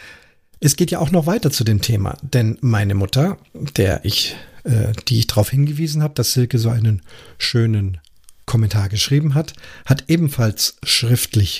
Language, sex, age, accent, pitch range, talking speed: German, male, 40-59, German, 115-140 Hz, 150 wpm